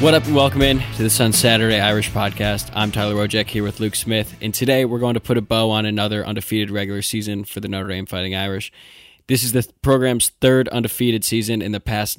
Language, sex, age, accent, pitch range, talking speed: English, male, 10-29, American, 105-120 Hz, 230 wpm